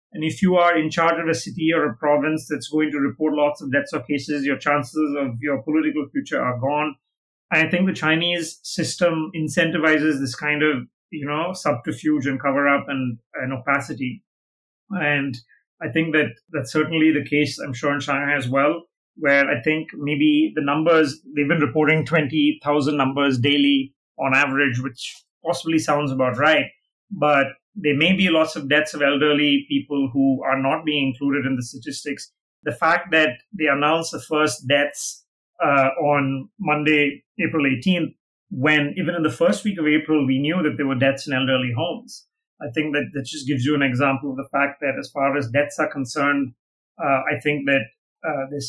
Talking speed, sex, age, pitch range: 190 wpm, male, 30-49, 140-160 Hz